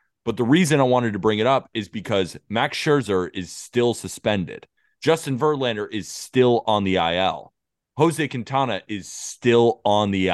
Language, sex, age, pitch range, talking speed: English, male, 20-39, 100-130 Hz, 170 wpm